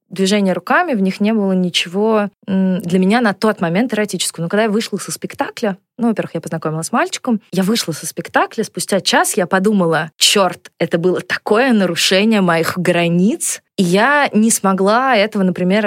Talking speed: 175 wpm